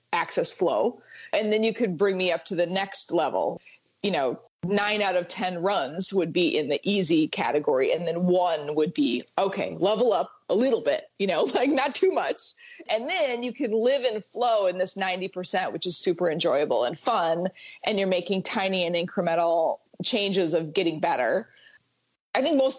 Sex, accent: female, American